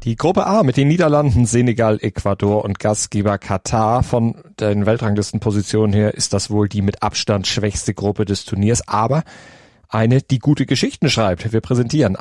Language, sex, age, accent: German, male, 40-59, German